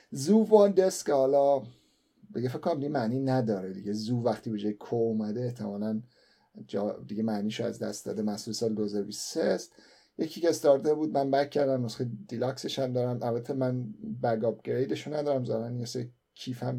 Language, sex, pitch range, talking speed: Persian, male, 110-135 Hz, 155 wpm